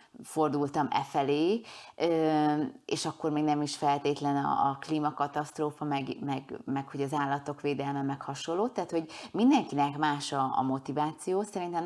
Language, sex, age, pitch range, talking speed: Hungarian, female, 30-49, 140-165 Hz, 135 wpm